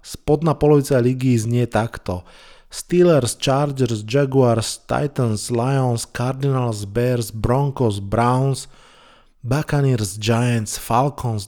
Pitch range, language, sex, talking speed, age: 110-130 Hz, Slovak, male, 90 wpm, 20-39